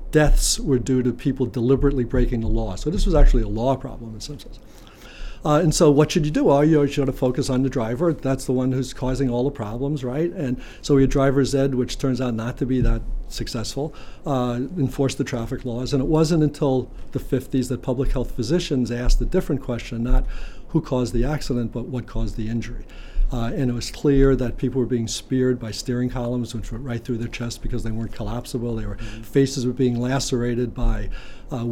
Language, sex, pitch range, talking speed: English, male, 120-135 Hz, 230 wpm